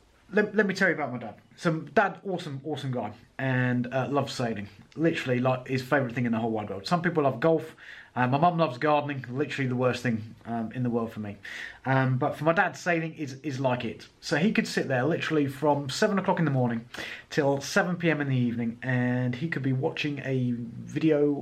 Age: 30-49